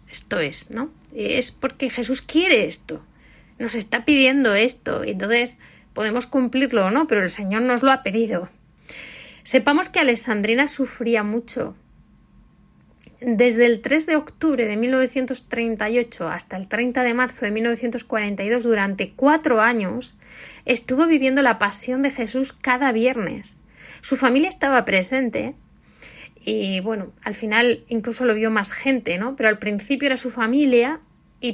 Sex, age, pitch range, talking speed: female, 30-49, 220-260 Hz, 145 wpm